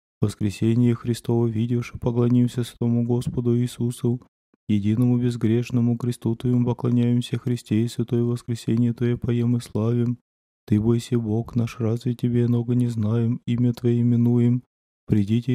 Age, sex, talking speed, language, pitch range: 20-39, male, 130 wpm, Russian, 115-120 Hz